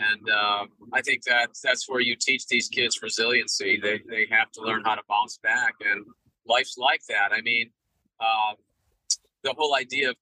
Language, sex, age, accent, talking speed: English, male, 40-59, American, 190 wpm